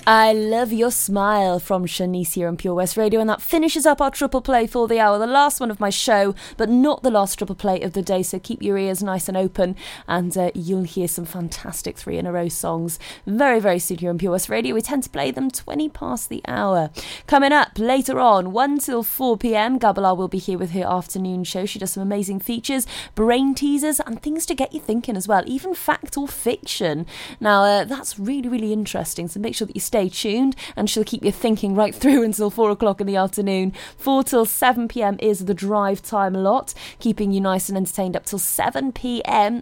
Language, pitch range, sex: English, 185-240 Hz, female